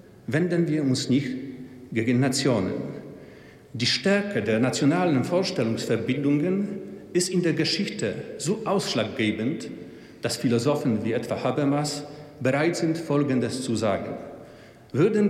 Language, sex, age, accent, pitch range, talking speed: German, male, 50-69, German, 125-165 Hz, 110 wpm